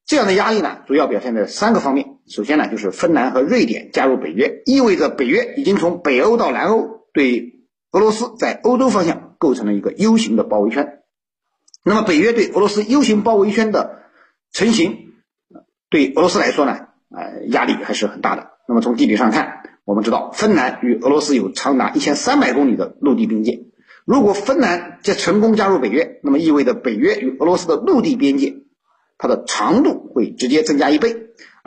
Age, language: 50-69, Chinese